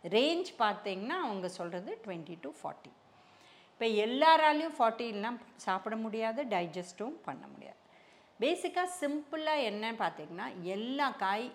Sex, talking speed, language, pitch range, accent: female, 110 wpm, Tamil, 185-275 Hz, native